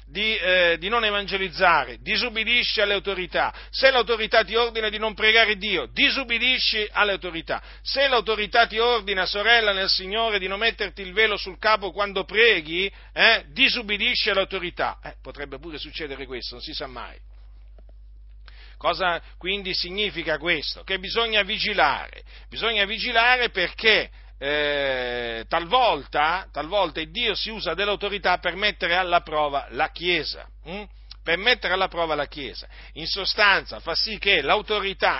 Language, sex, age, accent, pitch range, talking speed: Italian, male, 50-69, native, 165-220 Hz, 145 wpm